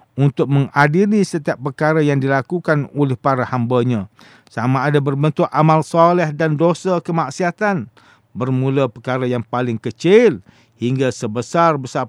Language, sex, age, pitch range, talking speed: English, male, 50-69, 125-165 Hz, 120 wpm